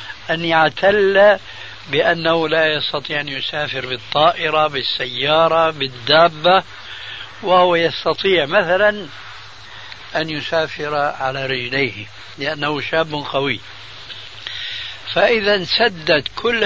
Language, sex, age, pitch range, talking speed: Arabic, male, 60-79, 125-175 Hz, 85 wpm